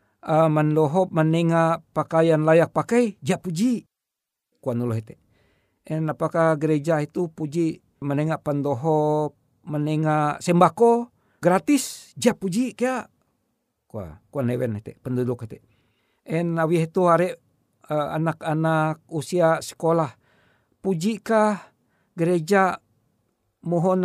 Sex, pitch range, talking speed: male, 150-195 Hz, 80 wpm